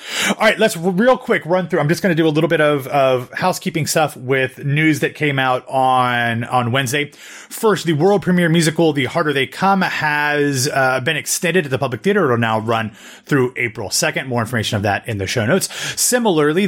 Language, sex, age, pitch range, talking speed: English, male, 30-49, 120-155 Hz, 215 wpm